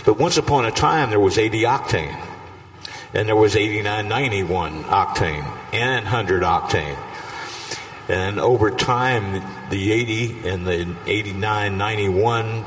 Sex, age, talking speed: male, 50-69, 120 wpm